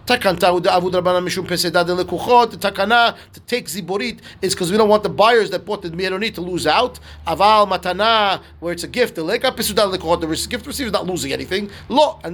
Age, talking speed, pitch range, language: 30-49, 140 wpm, 175-230 Hz, English